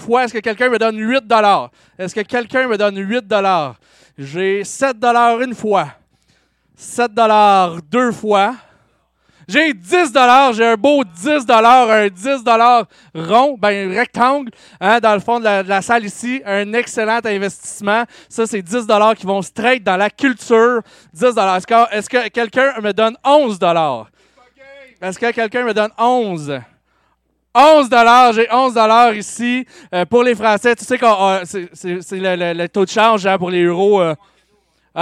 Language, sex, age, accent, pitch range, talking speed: French, male, 30-49, Canadian, 185-245 Hz, 180 wpm